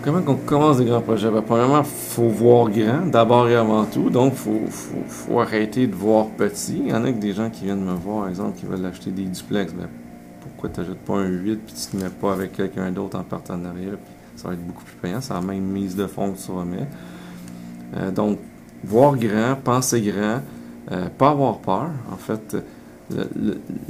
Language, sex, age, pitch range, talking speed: French, male, 40-59, 90-115 Hz, 230 wpm